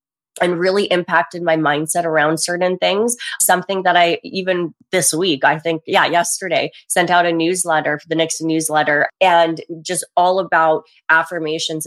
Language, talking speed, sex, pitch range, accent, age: English, 155 wpm, female, 155-185 Hz, American, 20-39